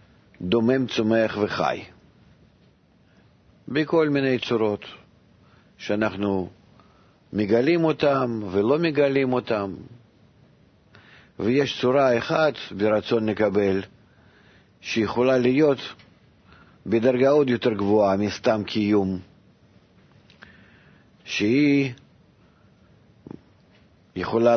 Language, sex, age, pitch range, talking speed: Hebrew, male, 50-69, 105-130 Hz, 65 wpm